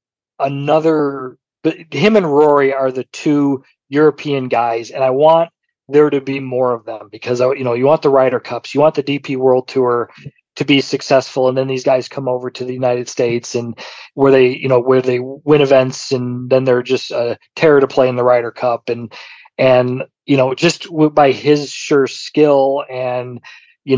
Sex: male